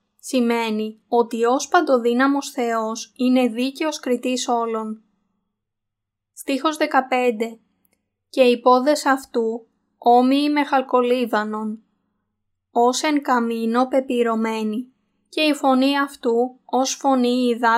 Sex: female